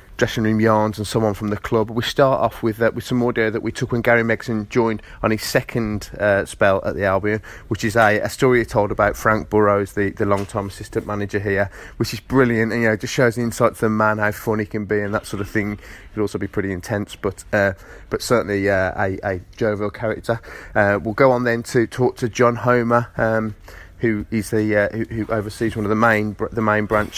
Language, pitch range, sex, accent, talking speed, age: English, 100-115 Hz, male, British, 240 wpm, 30-49